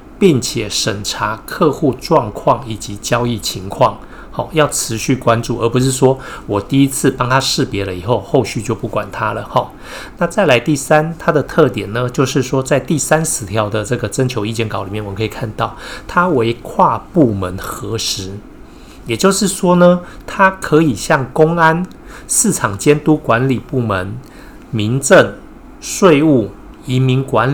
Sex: male